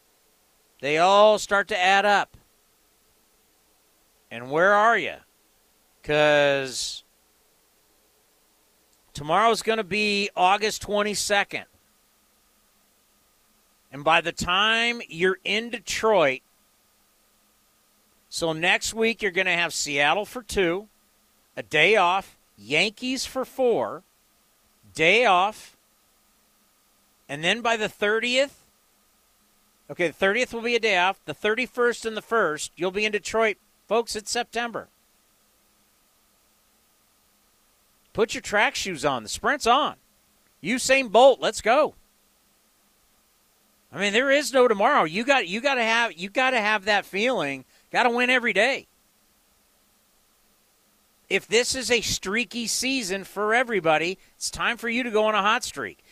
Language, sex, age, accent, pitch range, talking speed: English, male, 50-69, American, 180-235 Hz, 125 wpm